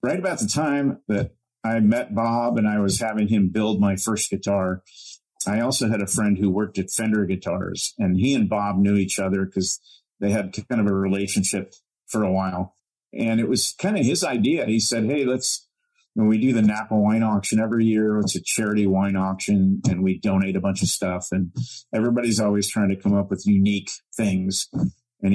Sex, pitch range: male, 95-115 Hz